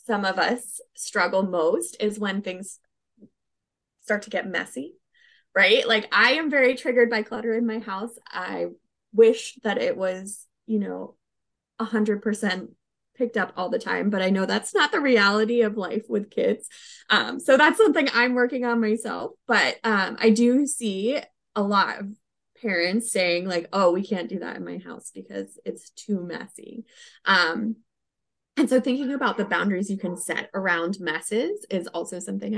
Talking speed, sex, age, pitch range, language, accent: 175 wpm, female, 20-39, 185-235 Hz, English, American